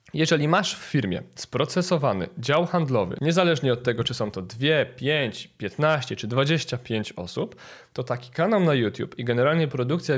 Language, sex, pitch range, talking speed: Polish, male, 125-165 Hz, 160 wpm